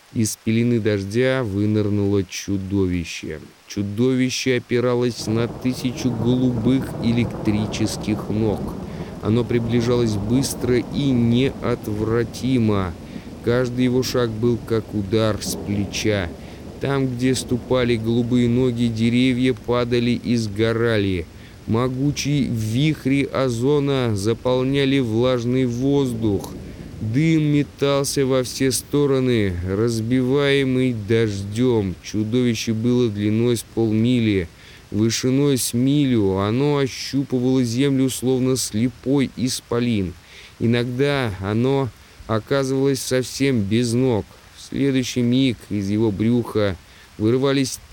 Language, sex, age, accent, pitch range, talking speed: Russian, male, 20-39, native, 105-130 Hz, 95 wpm